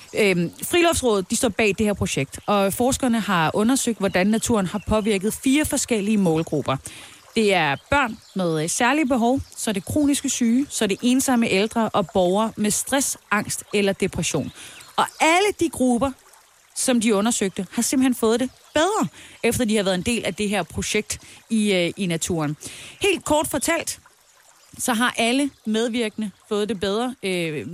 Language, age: Danish, 30-49